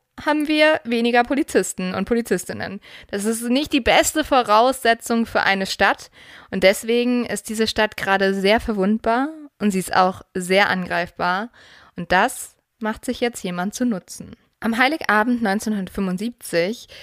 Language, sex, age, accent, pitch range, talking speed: German, female, 20-39, German, 190-240 Hz, 140 wpm